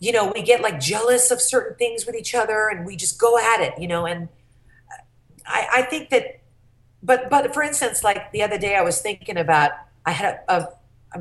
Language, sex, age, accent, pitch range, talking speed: English, female, 40-59, American, 170-255 Hz, 225 wpm